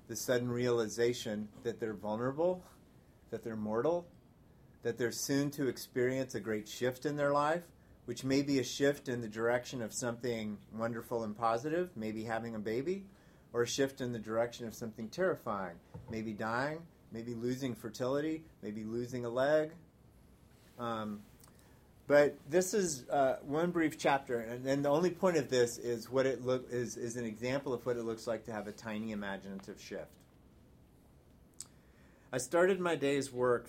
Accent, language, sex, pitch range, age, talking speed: American, English, male, 110-135 Hz, 30-49, 165 wpm